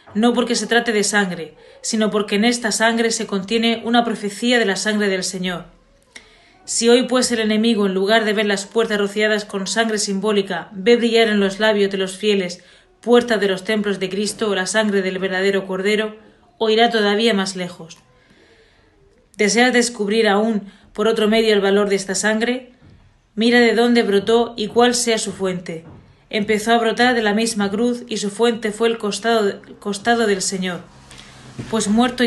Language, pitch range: Spanish, 195-230 Hz